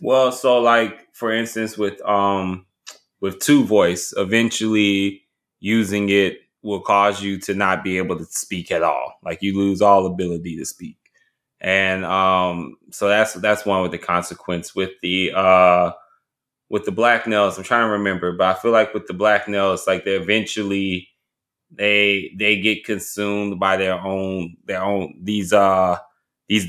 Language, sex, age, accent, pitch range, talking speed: English, male, 20-39, American, 95-105 Hz, 165 wpm